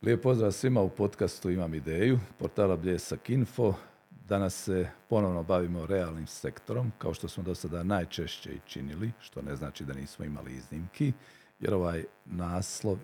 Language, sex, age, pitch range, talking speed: Croatian, male, 50-69, 85-110 Hz, 150 wpm